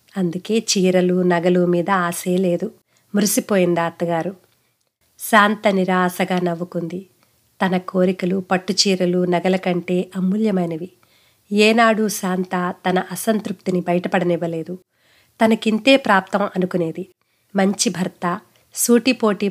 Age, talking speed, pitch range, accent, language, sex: 30-49, 90 wpm, 175-205 Hz, native, Telugu, female